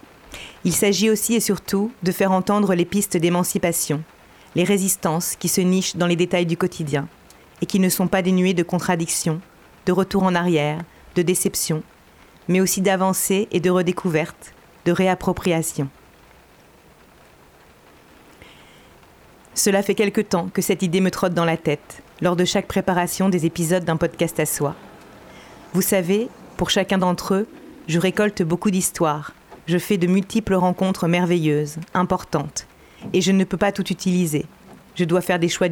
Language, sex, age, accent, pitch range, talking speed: French, female, 40-59, French, 170-190 Hz, 160 wpm